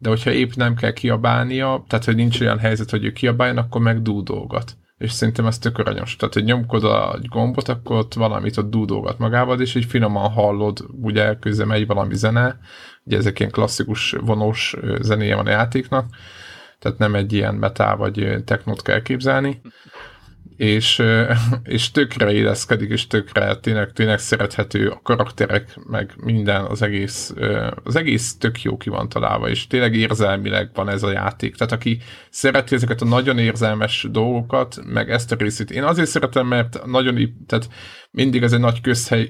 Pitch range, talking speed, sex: 105-120 Hz, 170 wpm, male